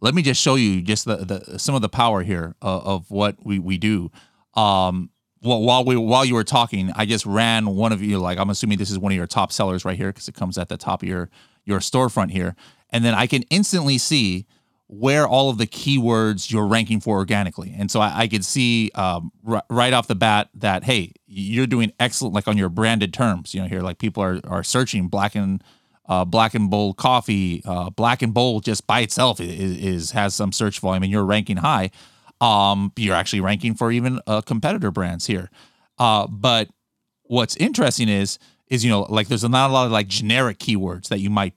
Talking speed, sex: 225 wpm, male